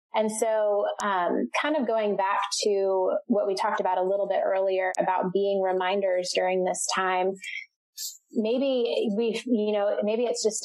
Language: English